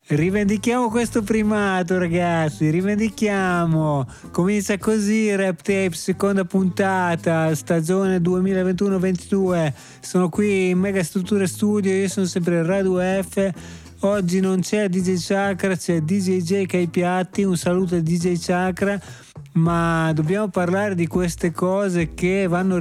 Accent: native